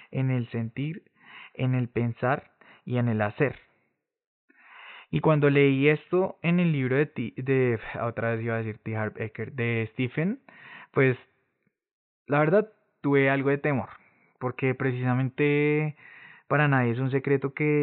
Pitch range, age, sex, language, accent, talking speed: 120-150 Hz, 20-39, male, Spanish, Colombian, 140 wpm